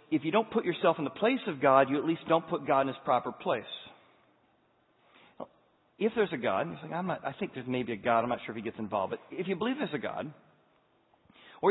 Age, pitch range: 40-59, 130-180 Hz